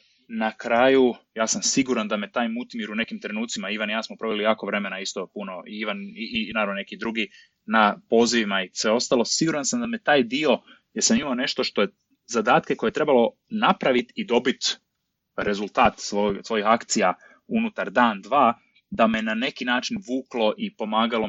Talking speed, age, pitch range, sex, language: 185 wpm, 20-39, 105-140 Hz, male, Croatian